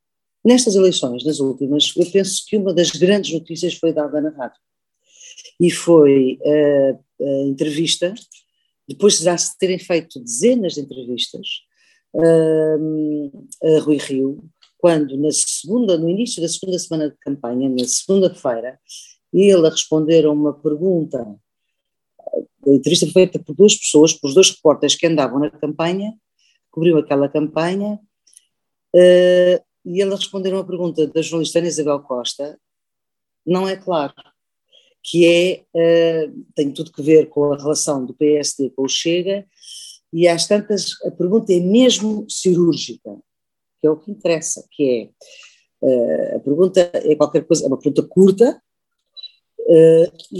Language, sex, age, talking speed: Portuguese, female, 50-69, 145 wpm